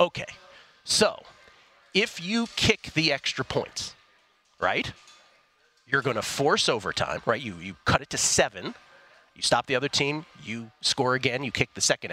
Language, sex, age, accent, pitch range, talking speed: English, male, 40-59, American, 125-160 Hz, 165 wpm